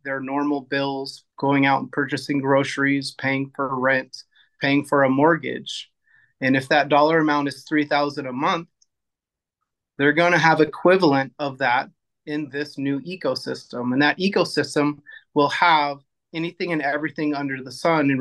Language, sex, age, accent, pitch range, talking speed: English, male, 30-49, American, 140-160 Hz, 155 wpm